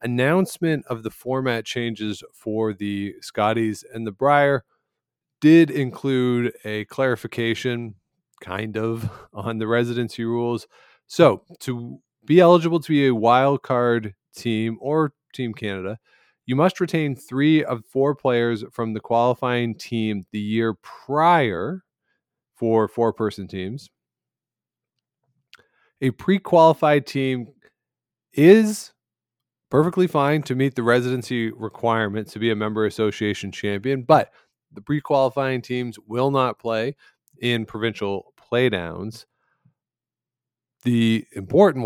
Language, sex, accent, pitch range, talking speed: English, male, American, 110-135 Hz, 115 wpm